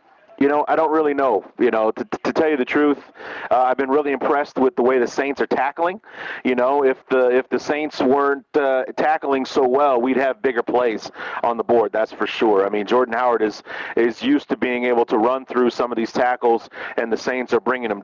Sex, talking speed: male, 235 wpm